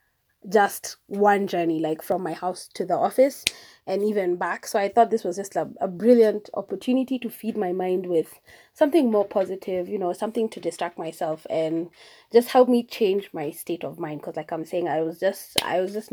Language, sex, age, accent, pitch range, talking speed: English, female, 20-39, South African, 175-230 Hz, 210 wpm